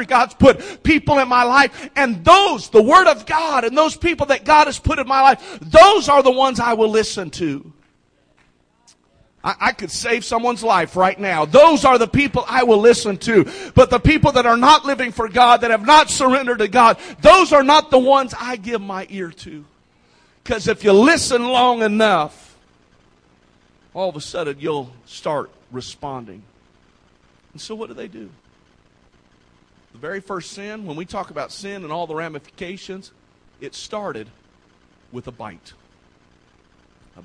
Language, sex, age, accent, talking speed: English, male, 50-69, American, 175 wpm